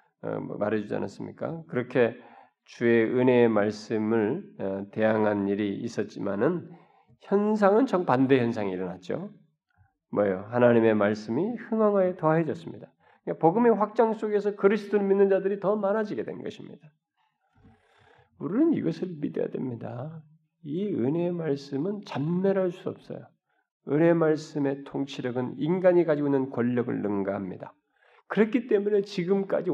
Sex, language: male, Korean